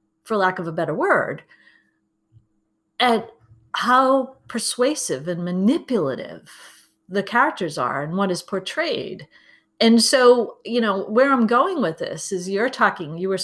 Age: 40-59